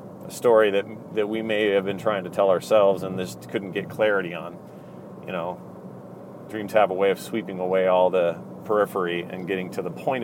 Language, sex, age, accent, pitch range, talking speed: English, male, 30-49, American, 95-110 Hz, 200 wpm